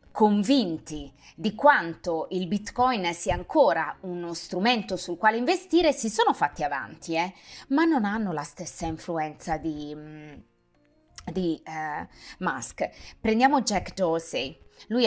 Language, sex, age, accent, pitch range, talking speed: Italian, female, 20-39, native, 165-210 Hz, 125 wpm